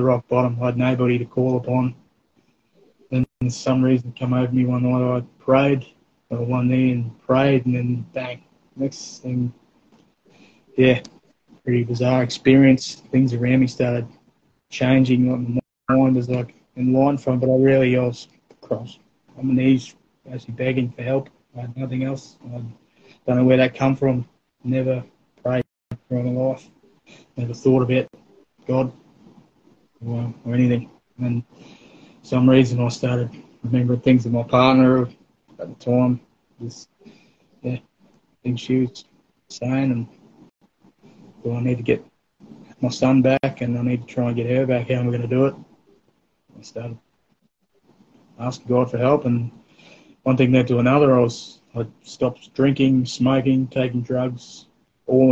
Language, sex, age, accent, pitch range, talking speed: English, male, 20-39, Australian, 120-130 Hz, 160 wpm